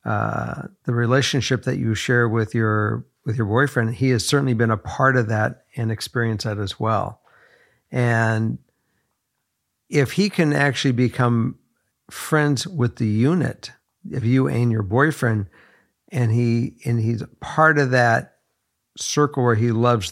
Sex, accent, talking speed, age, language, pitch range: male, American, 150 wpm, 60-79, English, 115-140 Hz